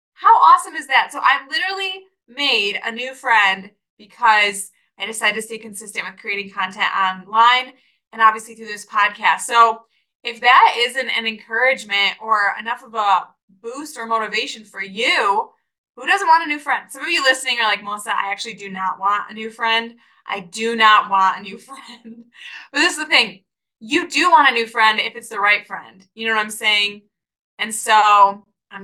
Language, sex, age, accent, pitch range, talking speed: English, female, 20-39, American, 210-255 Hz, 195 wpm